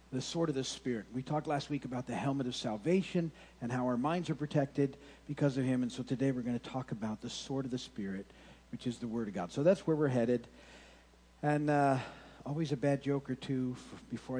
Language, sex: English, male